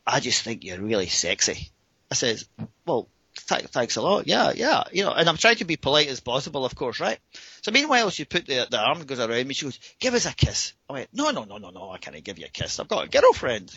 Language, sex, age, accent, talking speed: English, male, 30-49, British, 265 wpm